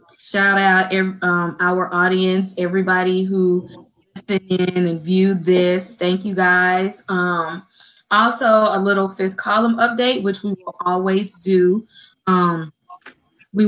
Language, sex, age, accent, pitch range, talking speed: English, female, 20-39, American, 180-210 Hz, 125 wpm